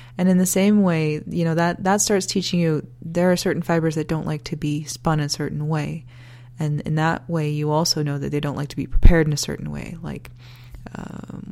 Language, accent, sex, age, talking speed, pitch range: English, American, female, 20-39, 235 wpm, 125-170 Hz